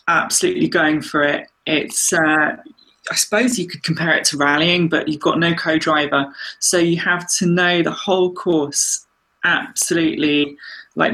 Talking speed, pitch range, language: 155 wpm, 155-190 Hz, English